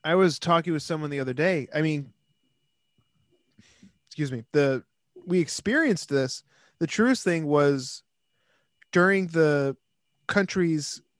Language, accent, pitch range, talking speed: English, American, 140-170 Hz, 125 wpm